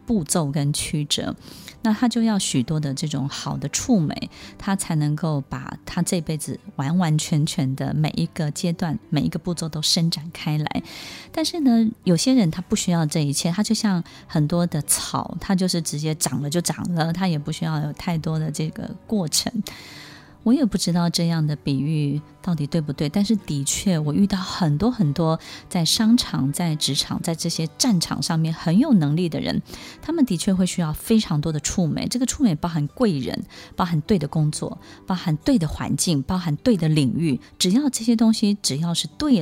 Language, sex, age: Chinese, female, 20-39